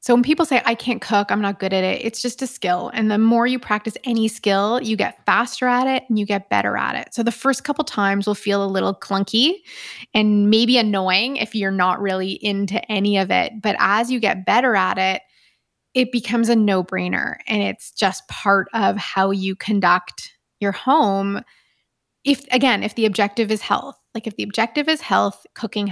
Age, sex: 20-39, female